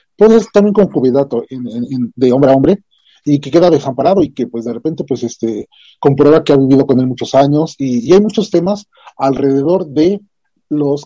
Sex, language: male, Spanish